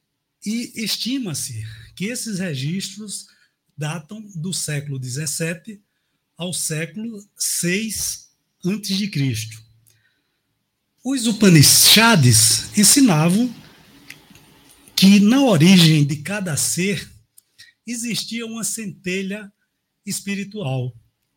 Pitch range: 145-205 Hz